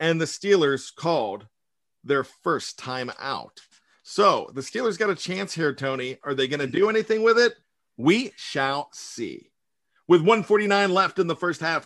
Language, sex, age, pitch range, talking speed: English, male, 40-59, 140-175 Hz, 170 wpm